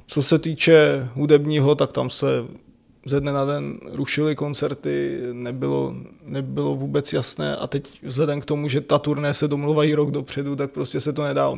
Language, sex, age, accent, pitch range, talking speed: Czech, male, 20-39, native, 125-145 Hz, 180 wpm